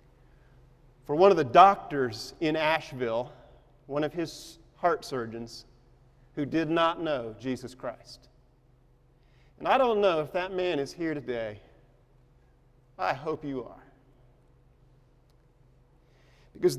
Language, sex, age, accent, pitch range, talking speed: English, male, 40-59, American, 125-160 Hz, 120 wpm